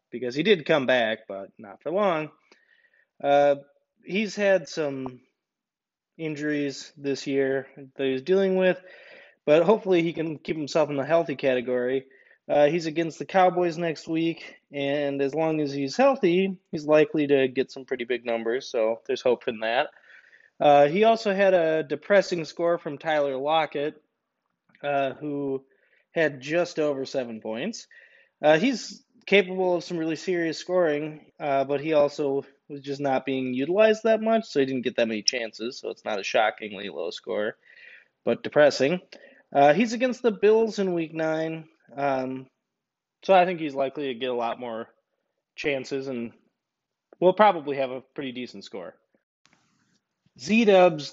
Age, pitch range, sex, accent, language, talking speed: 20-39, 135-190 Hz, male, American, English, 160 wpm